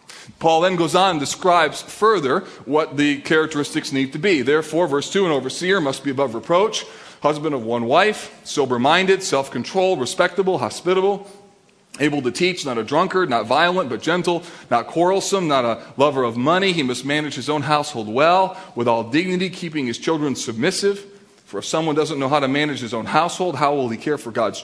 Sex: male